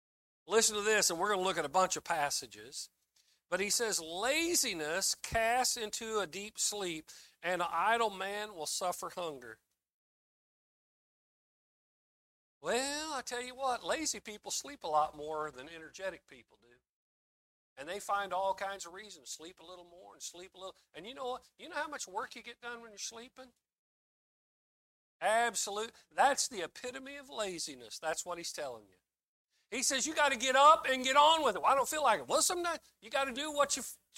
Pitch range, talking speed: 180-250 Hz, 190 wpm